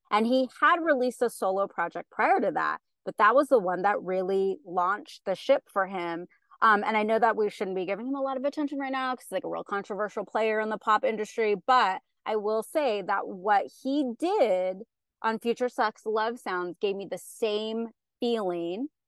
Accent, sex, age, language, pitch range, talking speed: American, female, 30-49, English, 190-245 Hz, 210 wpm